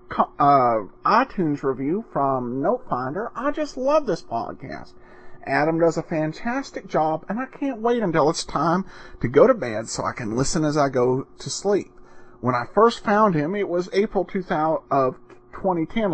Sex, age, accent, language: male, 40-59, American, English